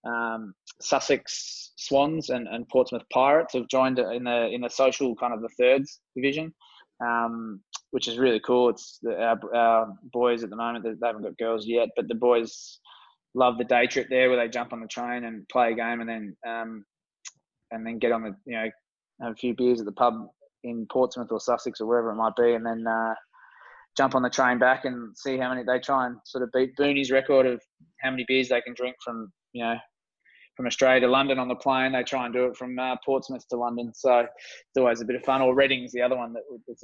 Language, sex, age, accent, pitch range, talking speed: English, male, 20-39, Australian, 115-135 Hz, 235 wpm